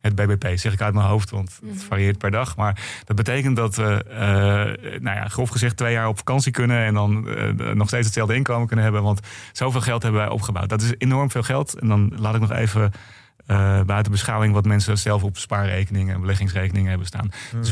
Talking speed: 225 wpm